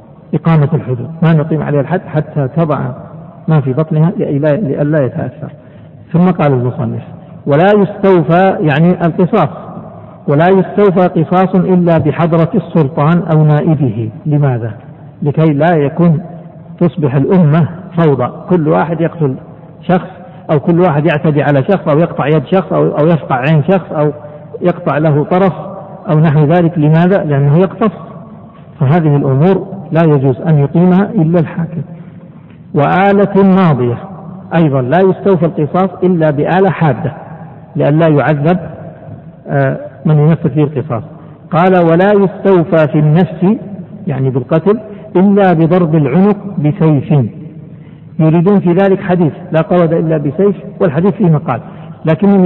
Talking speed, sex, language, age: 125 wpm, male, Arabic, 60-79